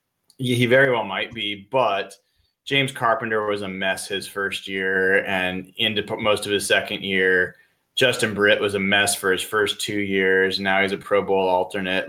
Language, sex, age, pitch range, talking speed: English, male, 20-39, 100-120 Hz, 185 wpm